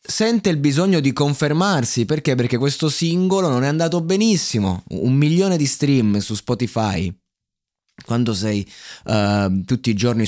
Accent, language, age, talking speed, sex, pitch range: native, Italian, 20-39, 145 wpm, male, 110-145 Hz